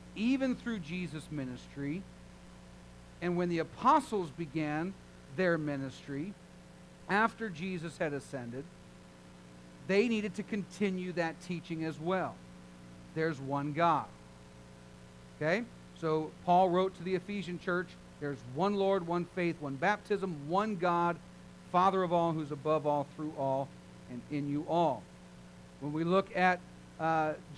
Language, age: English, 50-69